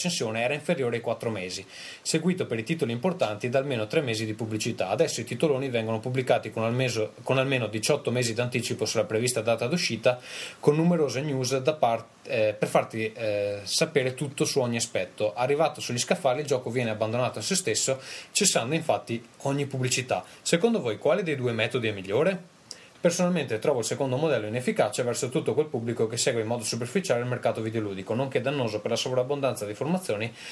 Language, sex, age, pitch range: Italian, male, 20-39, 110-150 Hz